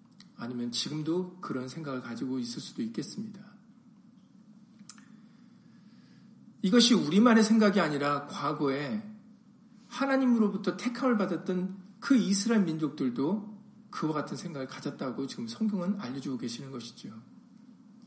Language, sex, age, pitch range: Korean, male, 40-59, 165-230 Hz